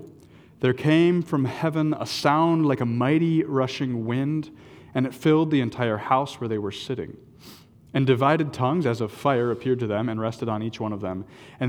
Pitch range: 115-145 Hz